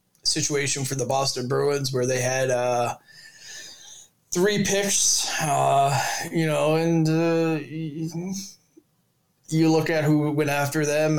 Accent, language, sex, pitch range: American, English, male, 125-155 Hz